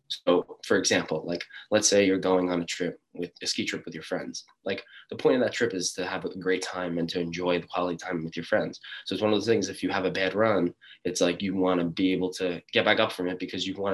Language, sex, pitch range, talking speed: English, male, 85-95 Hz, 290 wpm